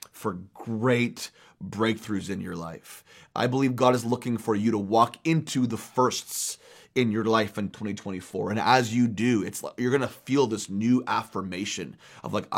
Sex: male